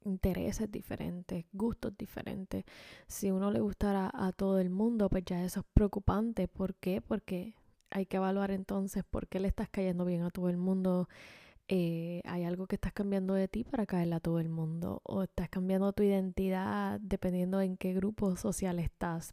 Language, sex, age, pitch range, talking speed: Spanish, female, 10-29, 185-210 Hz, 185 wpm